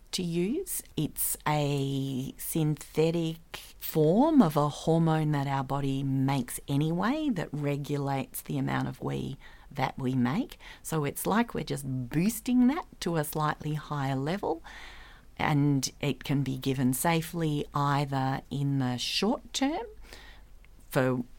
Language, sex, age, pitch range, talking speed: English, female, 40-59, 135-190 Hz, 130 wpm